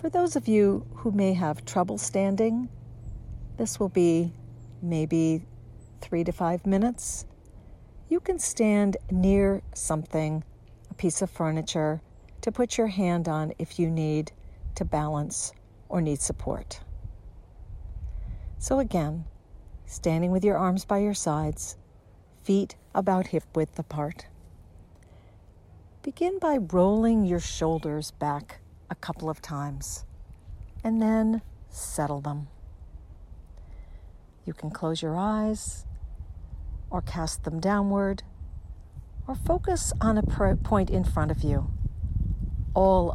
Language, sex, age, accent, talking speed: English, female, 50-69, American, 120 wpm